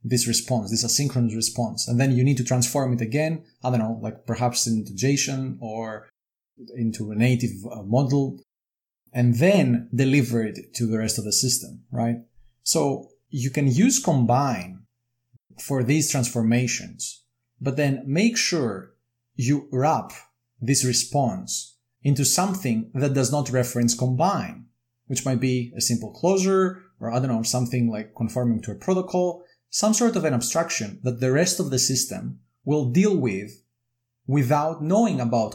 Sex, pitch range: male, 115-135 Hz